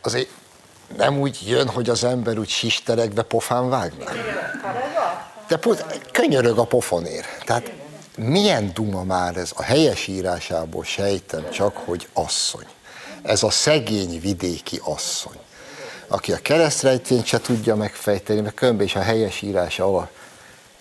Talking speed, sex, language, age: 125 wpm, male, Hungarian, 60-79